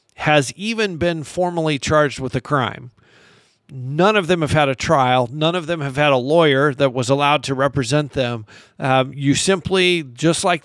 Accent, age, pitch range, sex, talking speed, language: American, 50-69, 140-165 Hz, male, 185 wpm, English